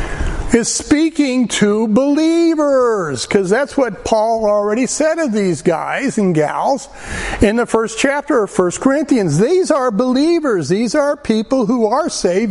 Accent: American